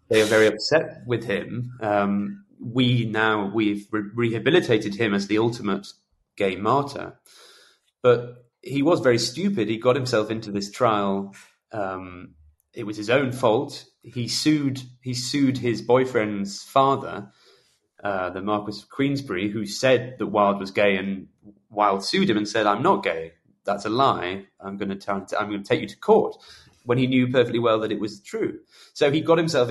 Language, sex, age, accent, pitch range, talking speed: English, male, 30-49, British, 105-125 Hz, 180 wpm